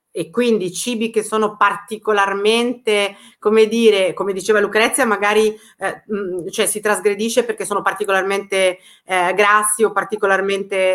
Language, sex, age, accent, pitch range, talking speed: Italian, female, 30-49, native, 195-240 Hz, 130 wpm